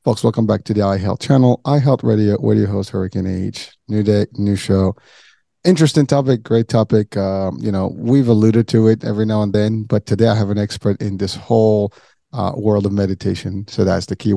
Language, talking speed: English, 210 wpm